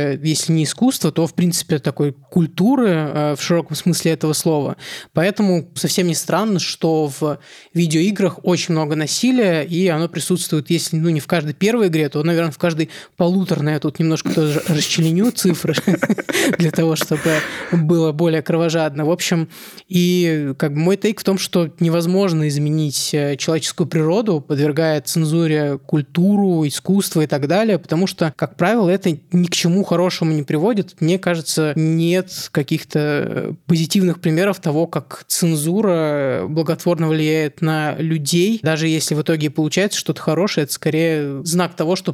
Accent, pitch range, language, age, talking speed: native, 155-175 Hz, Russian, 20-39, 150 wpm